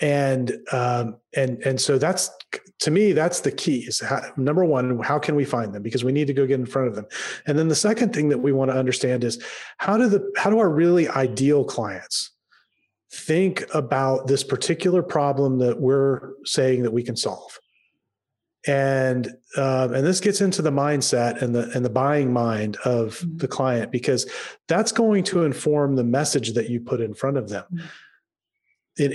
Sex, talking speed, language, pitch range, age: male, 190 wpm, English, 130-155 Hz, 30-49